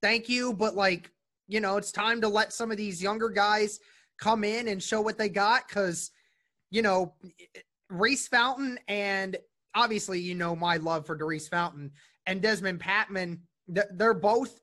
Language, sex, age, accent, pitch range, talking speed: English, male, 20-39, American, 170-215 Hz, 170 wpm